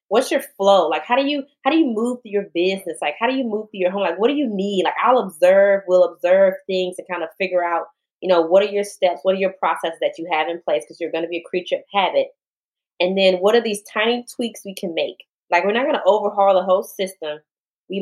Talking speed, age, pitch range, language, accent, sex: 275 wpm, 20-39, 170-200 Hz, English, American, female